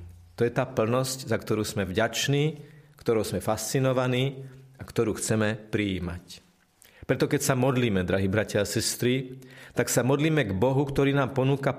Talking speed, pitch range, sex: 160 wpm, 105-140 Hz, male